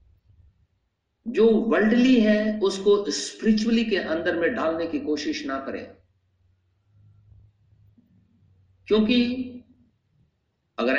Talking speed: 80 wpm